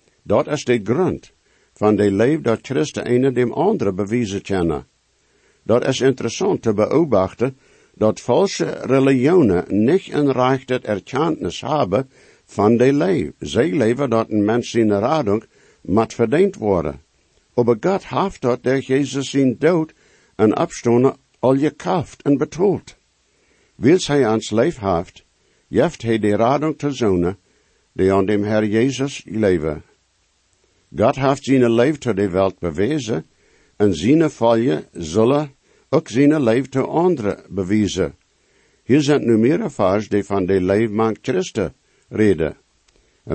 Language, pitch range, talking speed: English, 105-135 Hz, 140 wpm